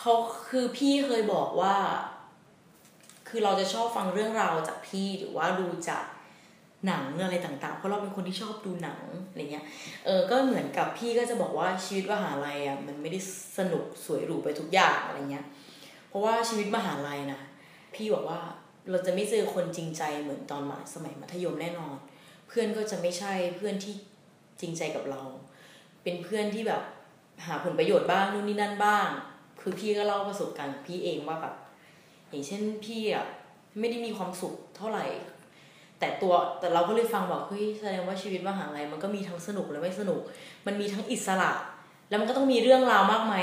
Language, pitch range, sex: Thai, 170-210 Hz, female